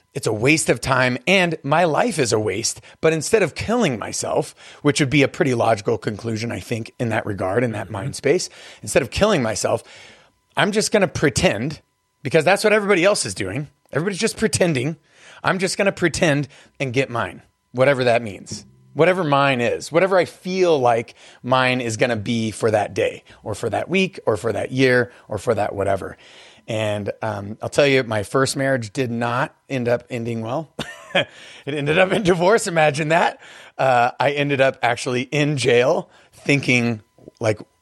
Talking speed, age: 190 wpm, 30-49